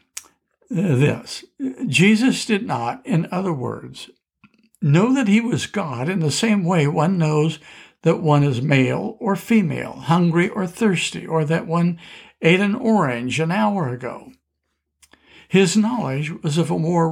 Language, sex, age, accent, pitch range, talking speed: English, male, 60-79, American, 150-210 Hz, 145 wpm